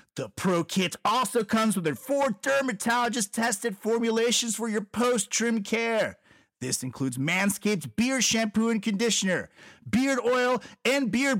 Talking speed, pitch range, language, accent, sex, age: 130 wpm, 170-235 Hz, English, American, male, 30-49